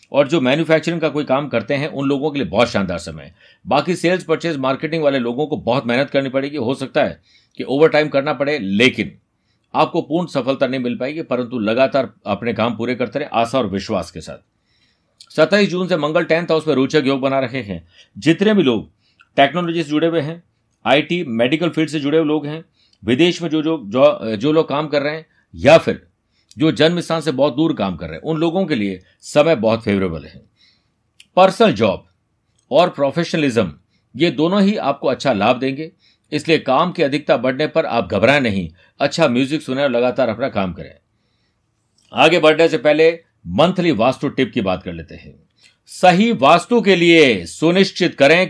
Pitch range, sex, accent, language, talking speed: 120-165 Hz, male, native, Hindi, 195 wpm